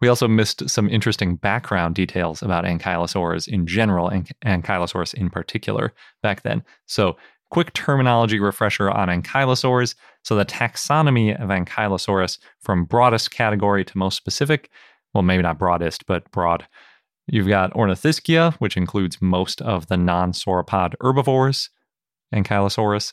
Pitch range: 90-115 Hz